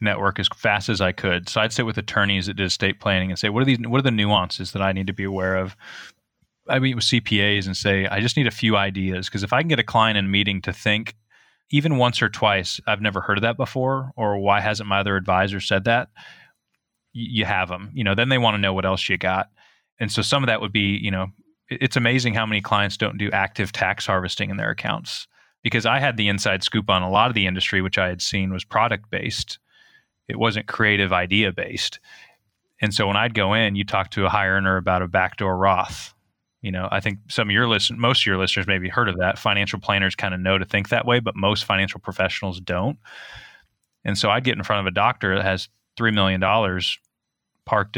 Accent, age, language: American, 20-39, English